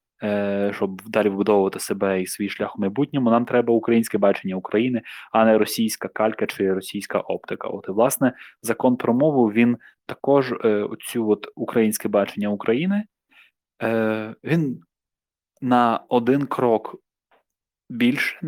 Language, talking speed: Ukrainian, 125 wpm